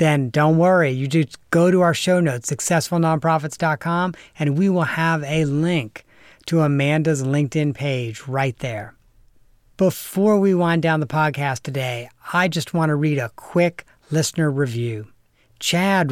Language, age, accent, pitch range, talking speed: English, 40-59, American, 135-165 Hz, 150 wpm